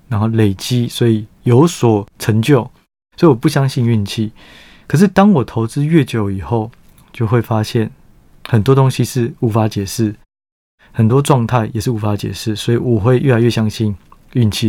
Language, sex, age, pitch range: Chinese, male, 20-39, 110-130 Hz